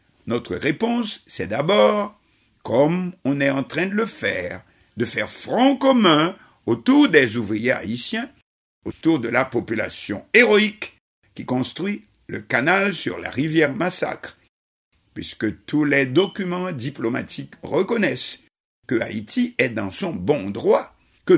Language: French